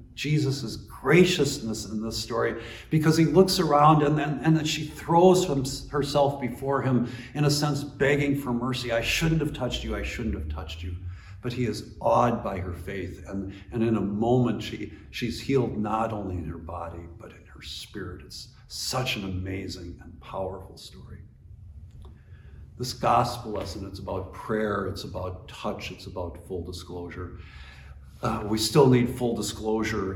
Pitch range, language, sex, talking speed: 95-135 Hz, English, male, 165 wpm